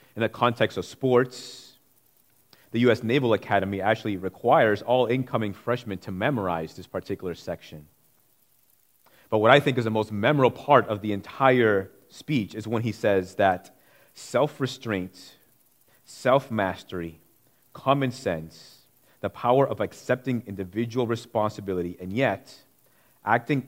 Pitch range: 95-125 Hz